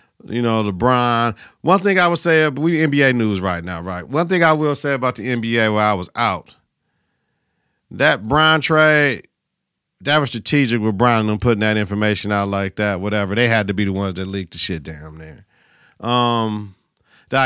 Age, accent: 50-69, American